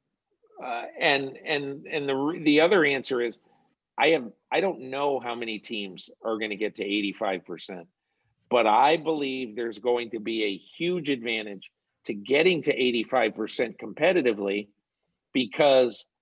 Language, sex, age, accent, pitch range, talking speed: English, male, 50-69, American, 115-150 Hz, 145 wpm